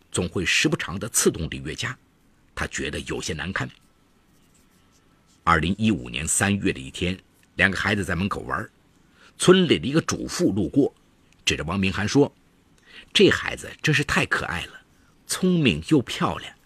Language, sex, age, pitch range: Chinese, male, 50-69, 90-140 Hz